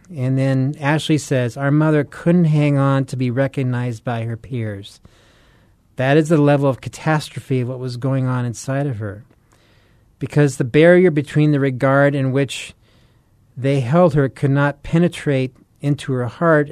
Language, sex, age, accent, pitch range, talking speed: English, male, 40-59, American, 120-145 Hz, 165 wpm